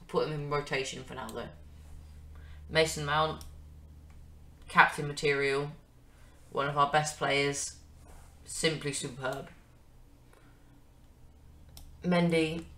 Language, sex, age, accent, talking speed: English, female, 20-39, British, 90 wpm